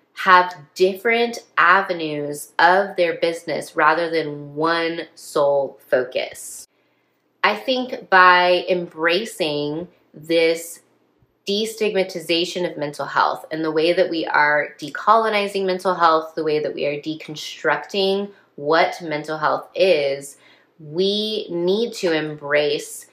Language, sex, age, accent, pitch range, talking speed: English, female, 20-39, American, 155-195 Hz, 110 wpm